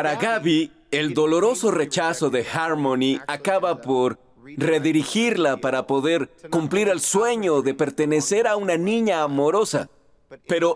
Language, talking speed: German, 125 wpm